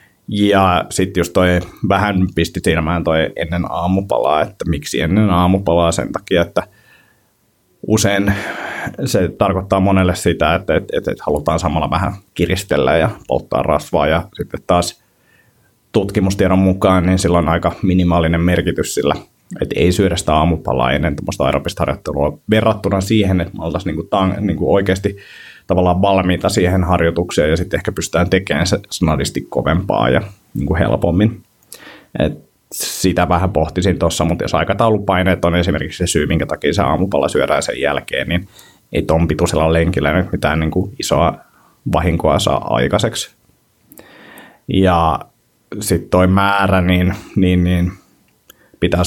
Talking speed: 135 wpm